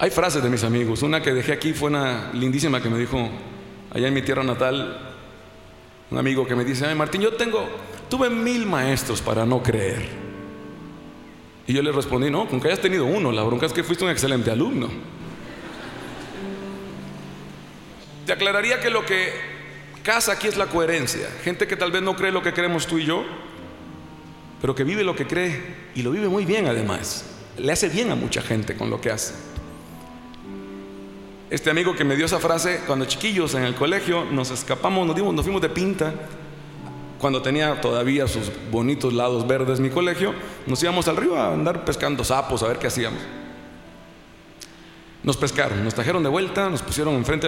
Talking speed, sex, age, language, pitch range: 185 wpm, male, 40-59, Spanish, 120-175 Hz